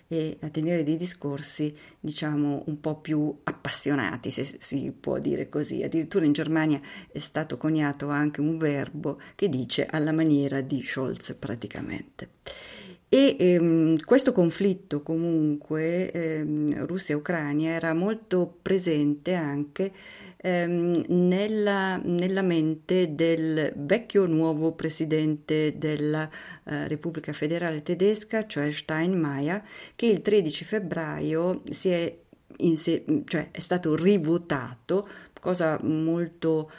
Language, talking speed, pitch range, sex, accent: Italian, 115 wpm, 150-175 Hz, female, native